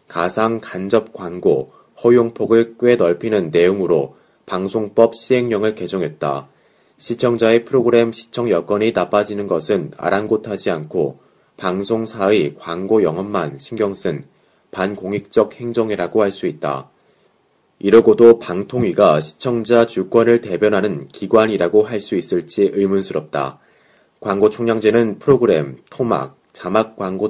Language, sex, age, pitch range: Korean, male, 30-49, 95-115 Hz